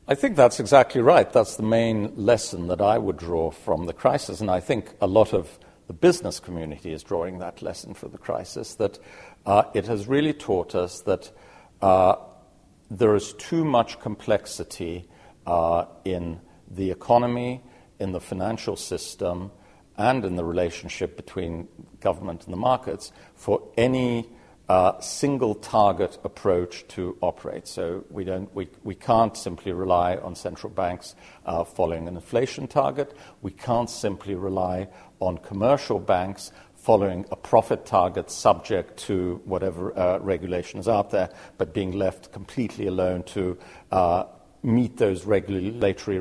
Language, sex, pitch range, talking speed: English, male, 90-115 Hz, 150 wpm